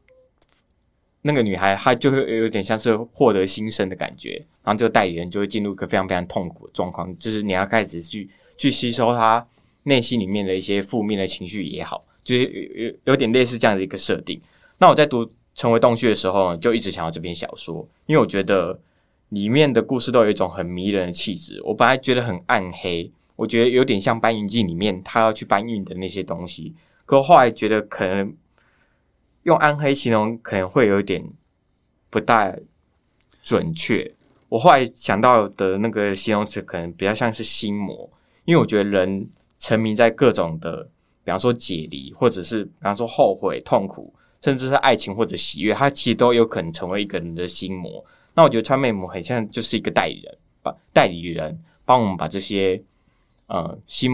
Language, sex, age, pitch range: Chinese, male, 20-39, 95-120 Hz